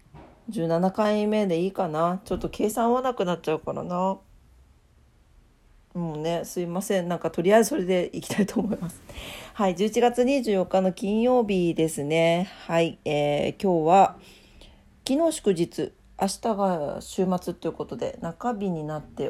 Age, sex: 40-59, female